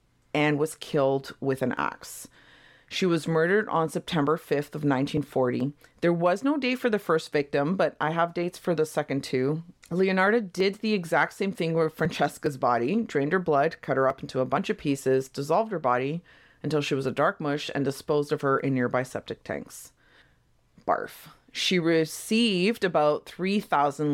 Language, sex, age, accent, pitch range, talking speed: English, female, 40-59, American, 145-195 Hz, 180 wpm